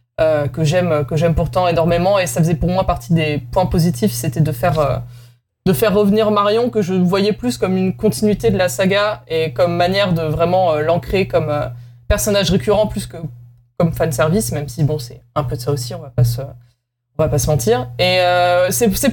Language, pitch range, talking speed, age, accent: French, 135-190 Hz, 225 wpm, 20-39, French